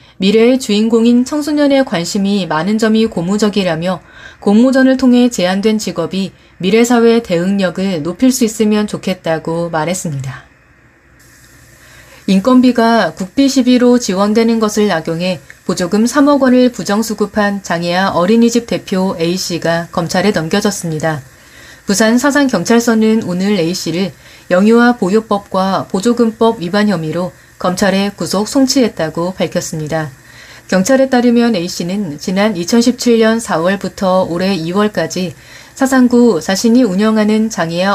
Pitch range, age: 175-230 Hz, 30-49